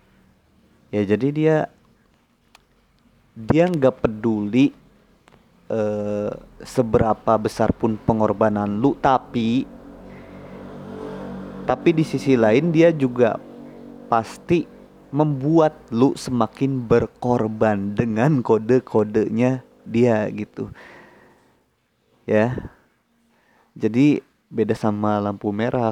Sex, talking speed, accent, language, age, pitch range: male, 80 wpm, native, Indonesian, 30-49, 105-130 Hz